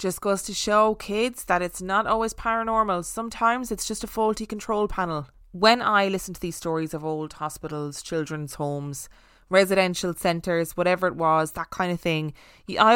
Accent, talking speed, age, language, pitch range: Irish, 175 wpm, 20-39, English, 160-210 Hz